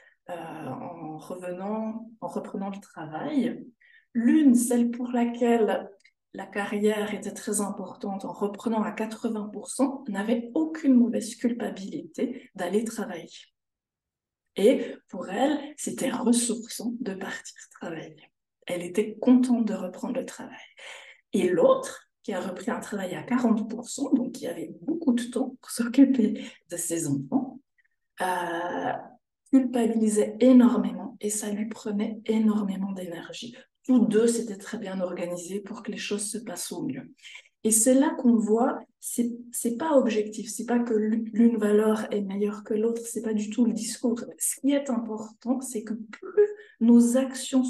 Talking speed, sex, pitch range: 150 wpm, female, 210-255 Hz